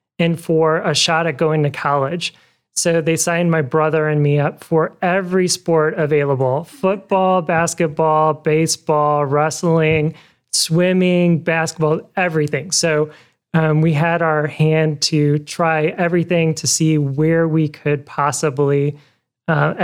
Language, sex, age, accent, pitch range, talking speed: English, male, 30-49, American, 145-165 Hz, 130 wpm